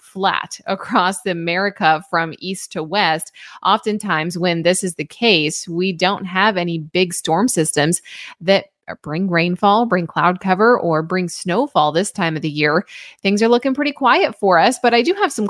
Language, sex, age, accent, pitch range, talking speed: English, female, 20-39, American, 170-210 Hz, 180 wpm